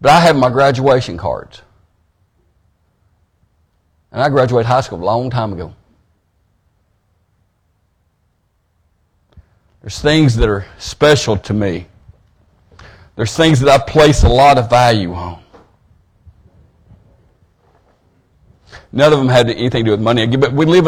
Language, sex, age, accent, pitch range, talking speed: English, male, 50-69, American, 90-125 Hz, 125 wpm